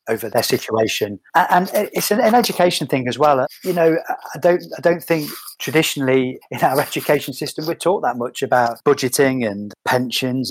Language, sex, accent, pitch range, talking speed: English, male, British, 120-145 Hz, 170 wpm